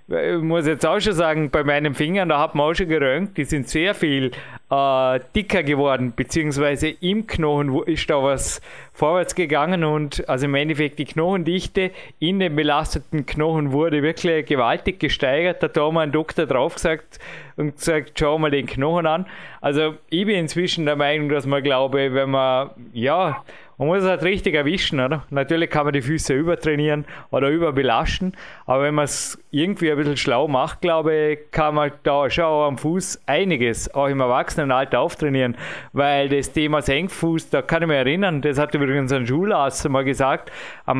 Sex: male